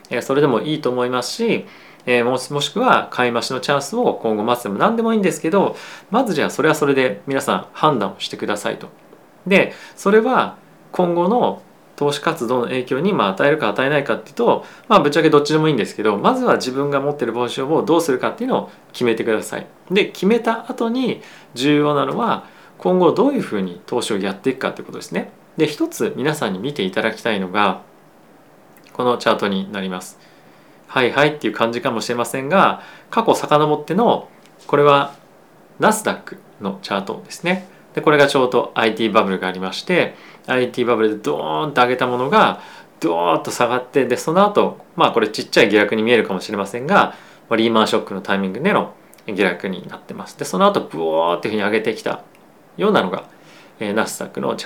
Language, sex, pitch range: Japanese, male, 115-165 Hz